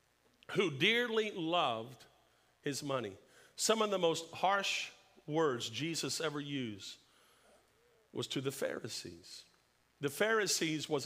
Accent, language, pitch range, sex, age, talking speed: American, English, 135-185 Hz, male, 50-69, 115 wpm